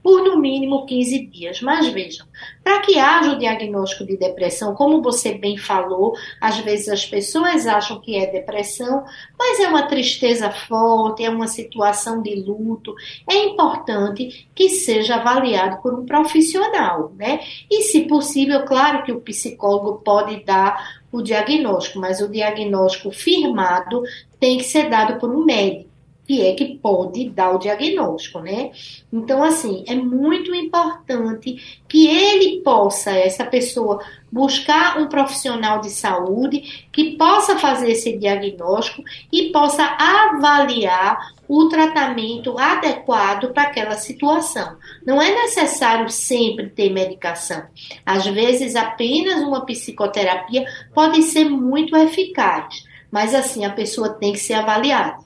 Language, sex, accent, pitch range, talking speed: Portuguese, female, Brazilian, 205-300 Hz, 140 wpm